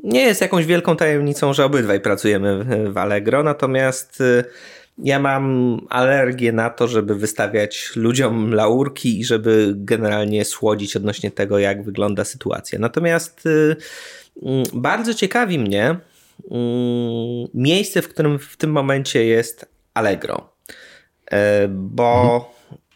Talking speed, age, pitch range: 110 wpm, 20-39, 105-145 Hz